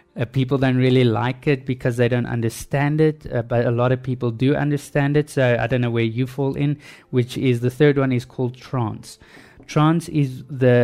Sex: male